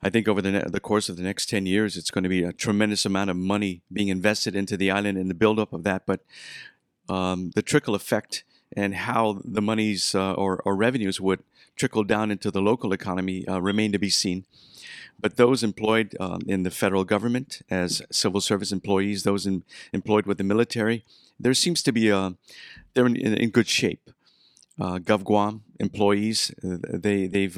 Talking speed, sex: 190 wpm, male